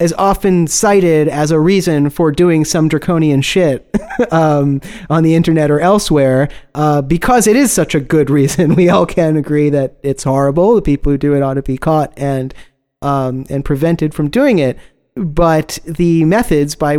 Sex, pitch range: male, 145-175 Hz